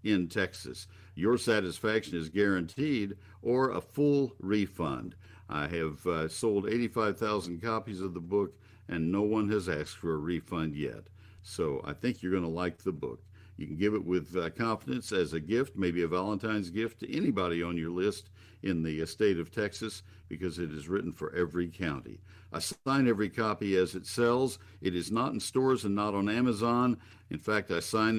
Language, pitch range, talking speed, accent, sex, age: English, 90-110 Hz, 185 wpm, American, male, 60-79